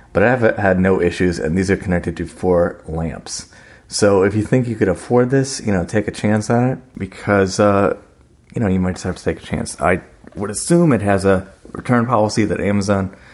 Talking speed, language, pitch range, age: 220 wpm, English, 90-110 Hz, 30-49